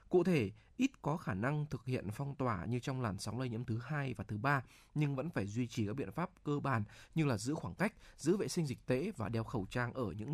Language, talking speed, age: Vietnamese, 275 wpm, 20-39